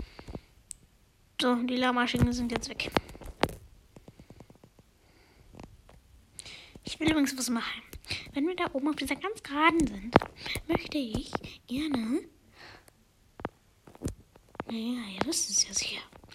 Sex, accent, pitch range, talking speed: female, German, 230-280 Hz, 105 wpm